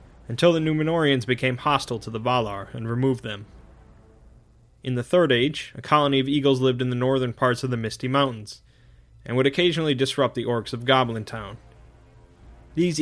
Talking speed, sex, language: 175 wpm, male, English